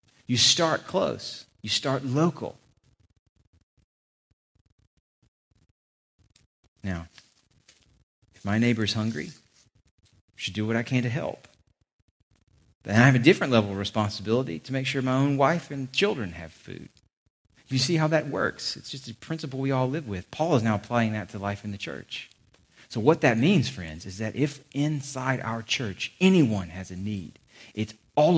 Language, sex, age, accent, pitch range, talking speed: English, male, 40-59, American, 95-125 Hz, 165 wpm